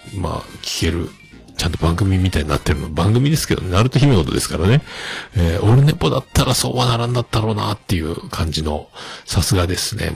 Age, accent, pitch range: 50-69, native, 85-125 Hz